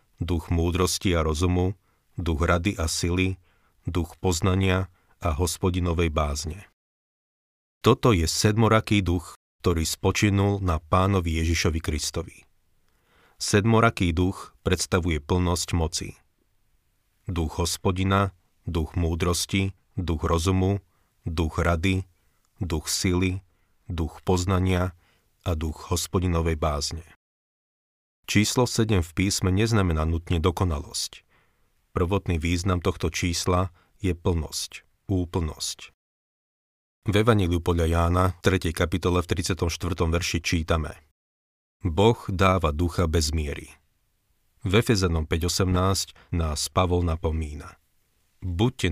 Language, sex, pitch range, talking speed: Slovak, male, 85-95 Hz, 100 wpm